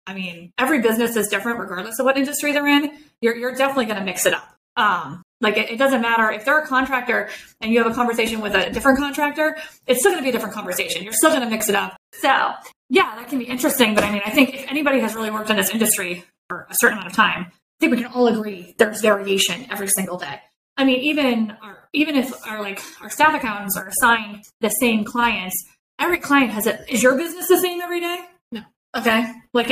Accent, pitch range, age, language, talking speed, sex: American, 210-270 Hz, 20-39, English, 240 wpm, female